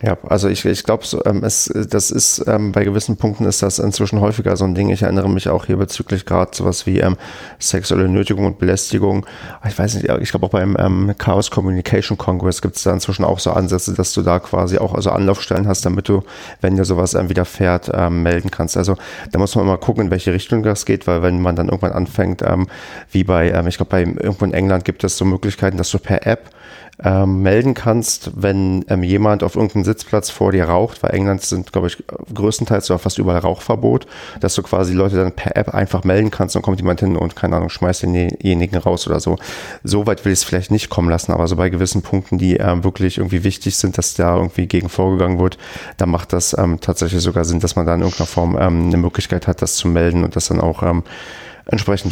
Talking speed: 230 wpm